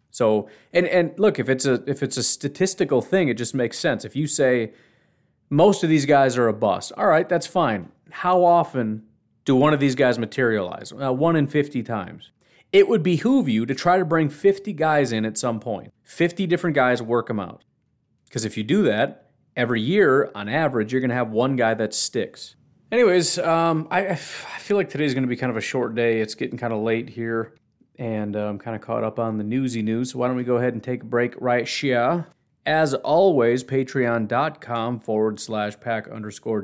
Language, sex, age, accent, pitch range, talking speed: English, male, 30-49, American, 115-155 Hz, 215 wpm